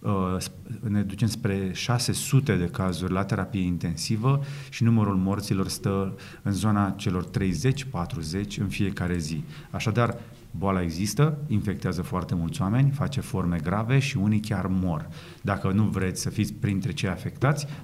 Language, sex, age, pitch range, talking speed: Romanian, male, 30-49, 100-125 Hz, 140 wpm